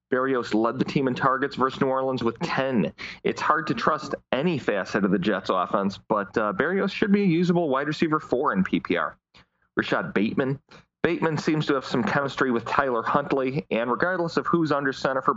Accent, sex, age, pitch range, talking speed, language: American, male, 30-49, 115-150 Hz, 200 wpm, English